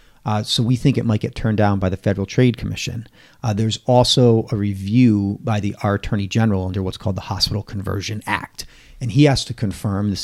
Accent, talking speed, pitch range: American, 210 wpm, 100-125 Hz